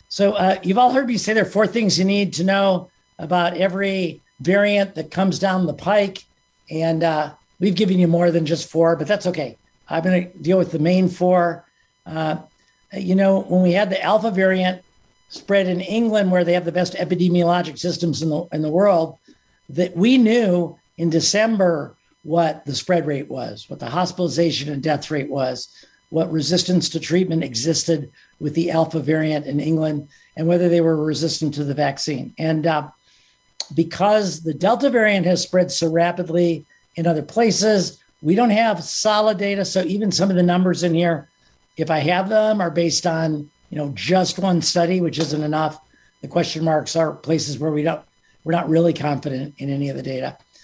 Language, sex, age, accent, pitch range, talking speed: English, male, 50-69, American, 155-185 Hz, 190 wpm